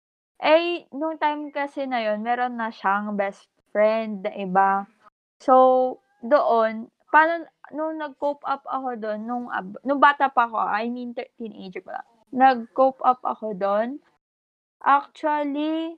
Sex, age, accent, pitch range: female, 20-39, Filipino, 220-290 Hz